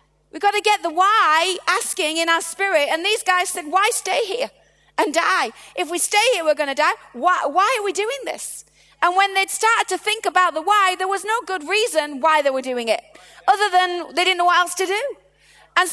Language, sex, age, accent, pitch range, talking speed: English, female, 30-49, British, 315-390 Hz, 235 wpm